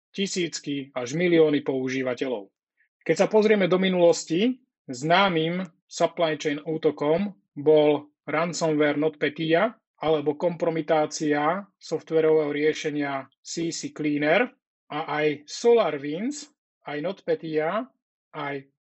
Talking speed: 90 wpm